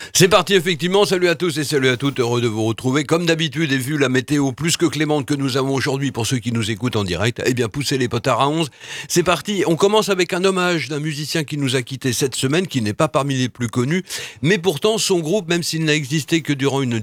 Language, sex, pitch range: French, male, 130-170 Hz